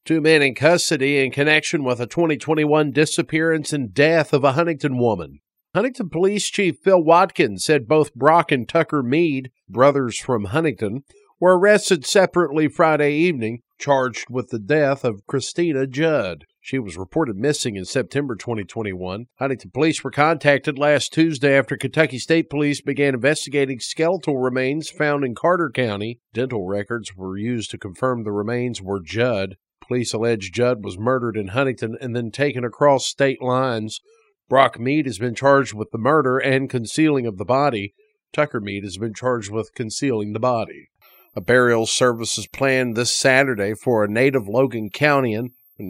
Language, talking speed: English, 165 wpm